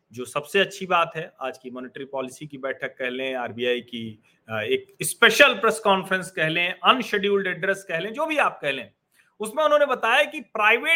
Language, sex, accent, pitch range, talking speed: Hindi, male, native, 140-215 Hz, 90 wpm